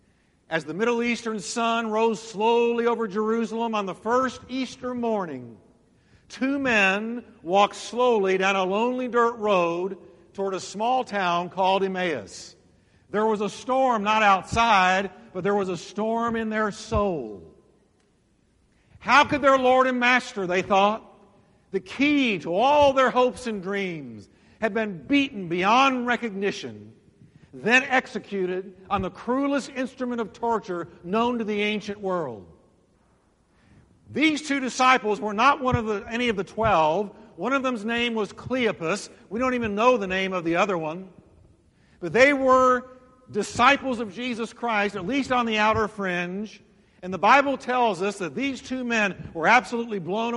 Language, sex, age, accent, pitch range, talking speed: English, male, 50-69, American, 190-245 Hz, 155 wpm